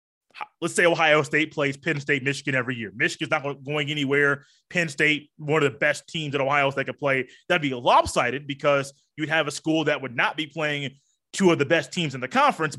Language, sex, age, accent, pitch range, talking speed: English, male, 20-39, American, 140-180 Hz, 220 wpm